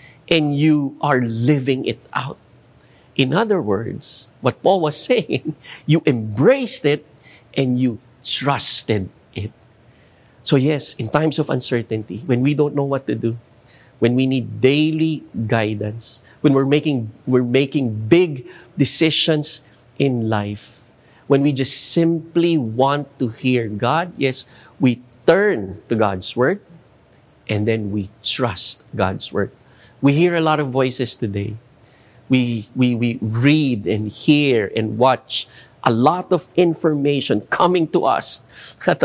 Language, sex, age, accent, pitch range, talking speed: English, male, 50-69, Filipino, 115-145 Hz, 135 wpm